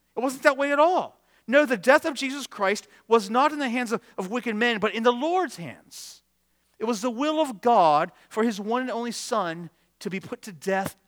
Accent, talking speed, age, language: American, 235 wpm, 40-59, English